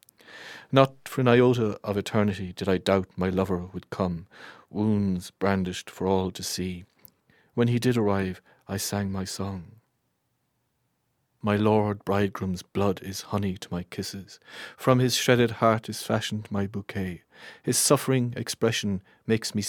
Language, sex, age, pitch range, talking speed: English, male, 40-59, 90-105 Hz, 150 wpm